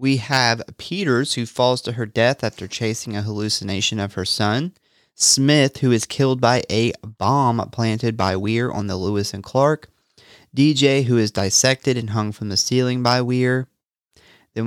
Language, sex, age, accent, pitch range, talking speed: English, male, 30-49, American, 105-135 Hz, 170 wpm